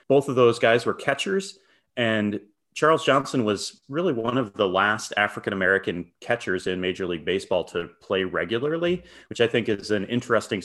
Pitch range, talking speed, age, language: 95-120 Hz, 170 wpm, 30-49, English